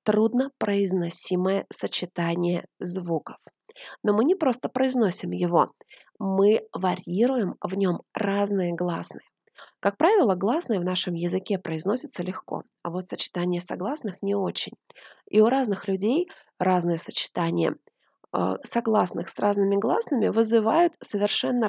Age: 20-39